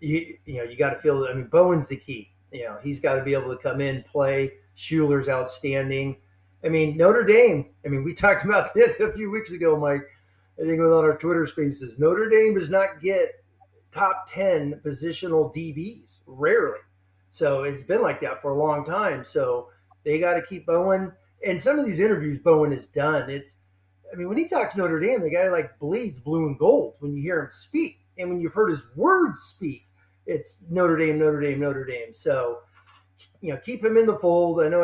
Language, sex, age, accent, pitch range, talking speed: English, male, 30-49, American, 135-195 Hz, 215 wpm